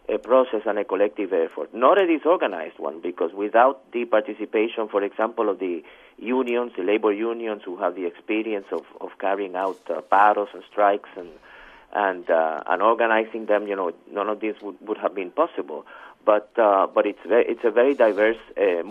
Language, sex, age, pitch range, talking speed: English, male, 50-69, 105-150 Hz, 190 wpm